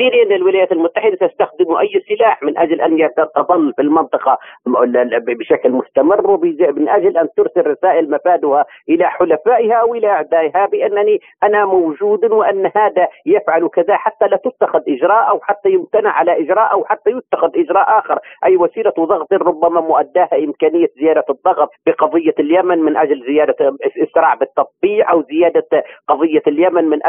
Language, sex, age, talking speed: Arabic, male, 40-59, 145 wpm